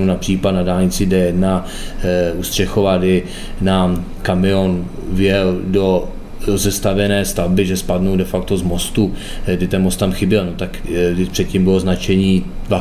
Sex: male